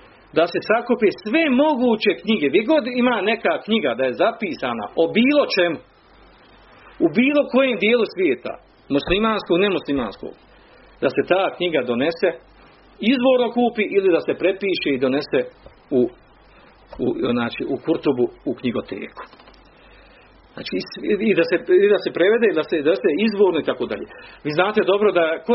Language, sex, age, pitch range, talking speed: Croatian, male, 40-59, 170-270 Hz, 155 wpm